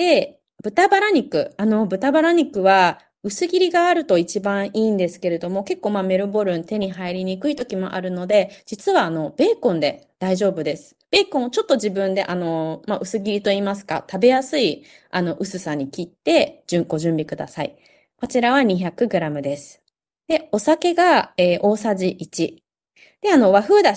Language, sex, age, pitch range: Japanese, female, 20-39, 170-260 Hz